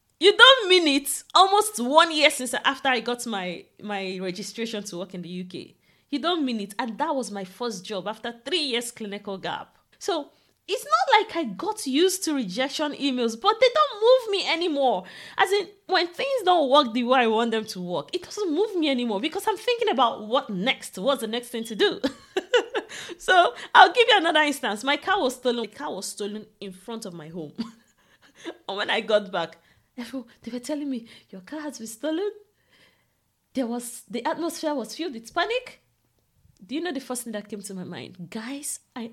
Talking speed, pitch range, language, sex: 205 wpm, 205-330 Hz, English, female